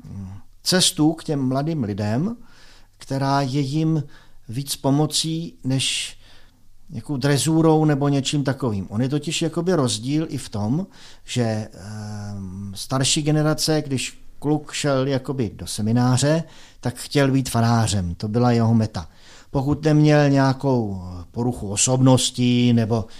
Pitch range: 115-150 Hz